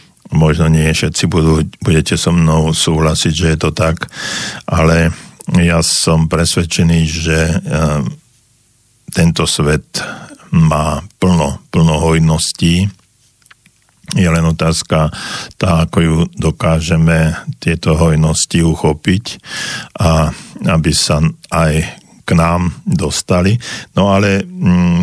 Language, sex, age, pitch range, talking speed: Slovak, male, 50-69, 80-85 Hz, 105 wpm